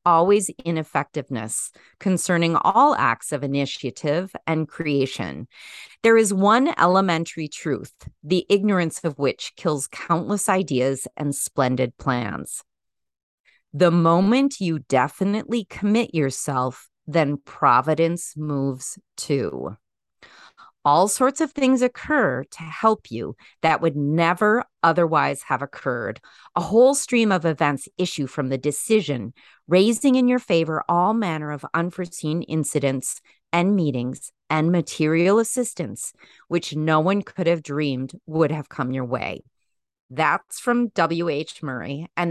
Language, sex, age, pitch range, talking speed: English, female, 30-49, 140-190 Hz, 125 wpm